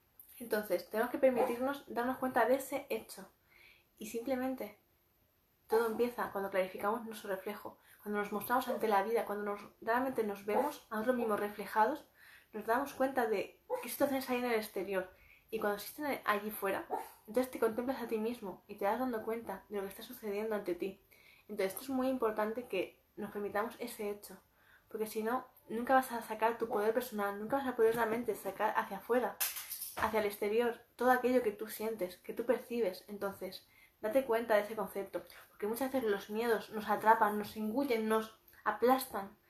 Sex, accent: female, Spanish